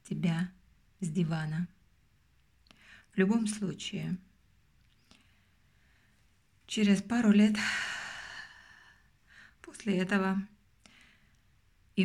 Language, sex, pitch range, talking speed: Russian, female, 170-200 Hz, 55 wpm